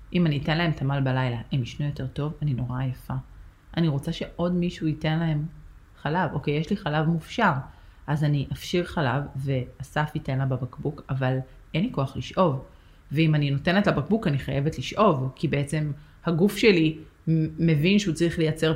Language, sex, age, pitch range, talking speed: Hebrew, female, 30-49, 140-170 Hz, 170 wpm